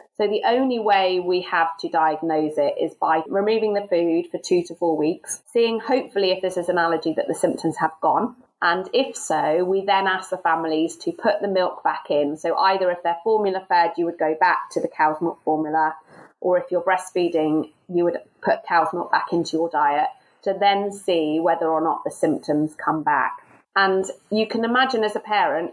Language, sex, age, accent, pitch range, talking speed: English, female, 30-49, British, 170-215 Hz, 210 wpm